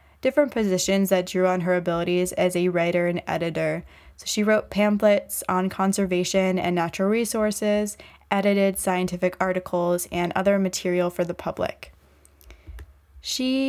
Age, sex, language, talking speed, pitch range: 10-29, female, English, 135 wpm, 180-200 Hz